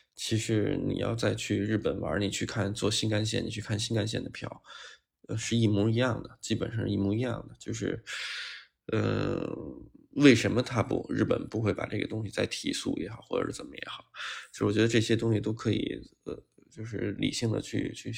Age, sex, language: 20-39, male, Chinese